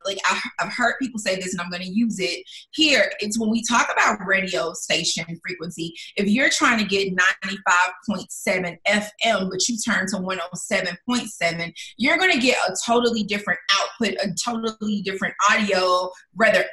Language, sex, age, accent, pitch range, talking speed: English, female, 30-49, American, 190-235 Hz, 165 wpm